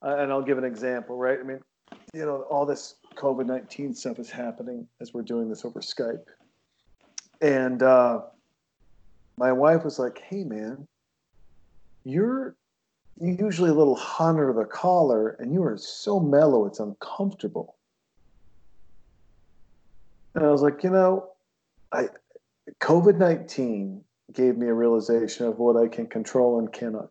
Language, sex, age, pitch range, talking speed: English, male, 40-59, 115-155 Hz, 140 wpm